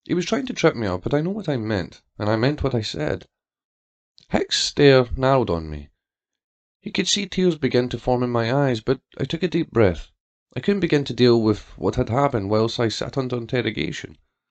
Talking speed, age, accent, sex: 225 wpm, 30-49, British, male